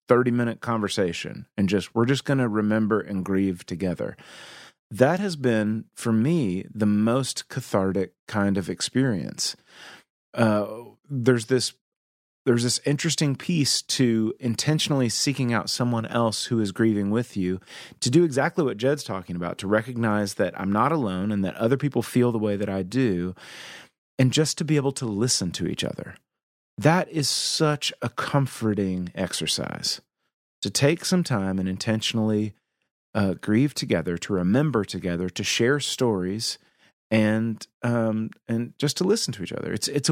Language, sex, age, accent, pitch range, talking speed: English, male, 30-49, American, 100-130 Hz, 160 wpm